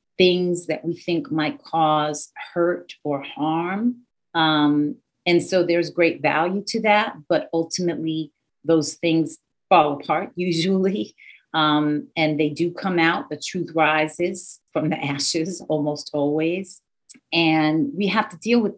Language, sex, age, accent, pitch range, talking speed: English, female, 40-59, American, 150-175 Hz, 140 wpm